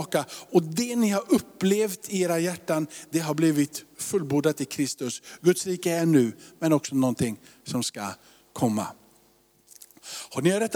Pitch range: 150-185 Hz